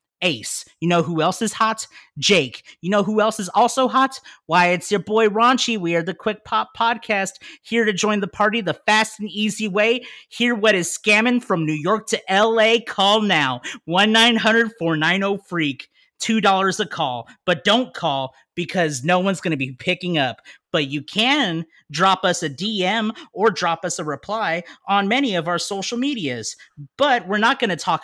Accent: American